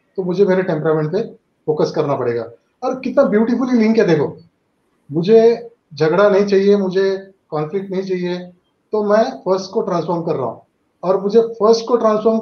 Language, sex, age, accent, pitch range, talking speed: Hindi, male, 30-49, native, 175-220 Hz, 170 wpm